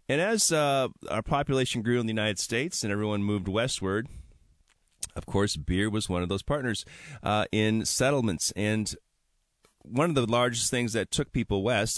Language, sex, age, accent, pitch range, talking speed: English, male, 30-49, American, 100-130 Hz, 175 wpm